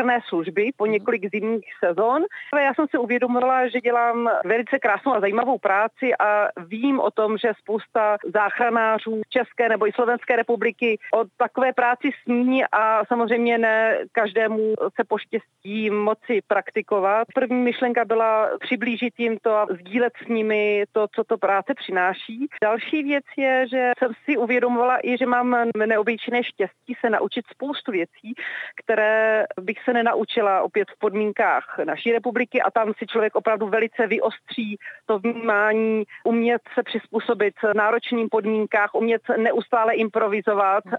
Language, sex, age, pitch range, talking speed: Slovak, female, 30-49, 210-245 Hz, 145 wpm